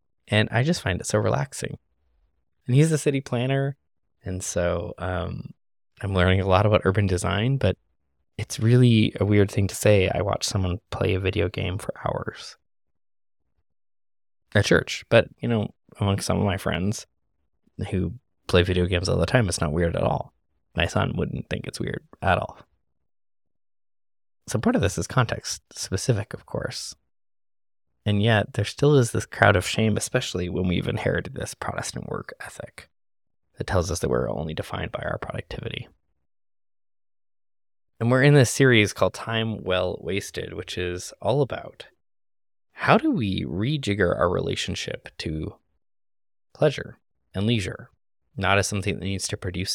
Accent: American